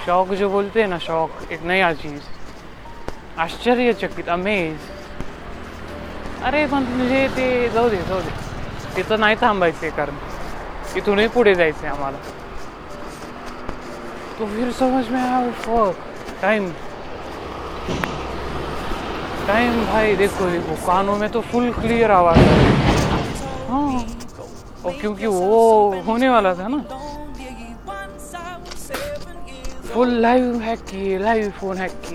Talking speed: 80 wpm